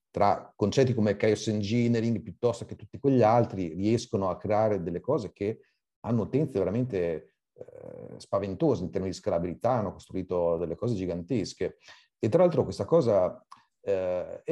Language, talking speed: Italian, 150 wpm